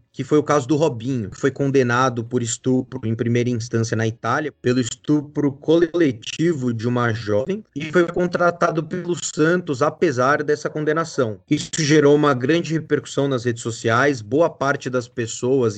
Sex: male